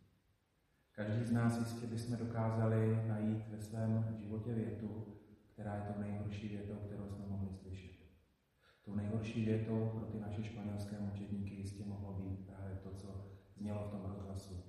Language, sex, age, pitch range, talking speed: Slovak, male, 30-49, 100-110 Hz, 160 wpm